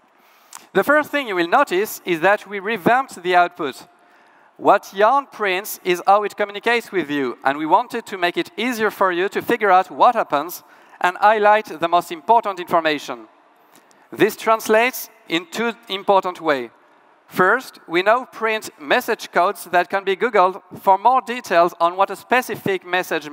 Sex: male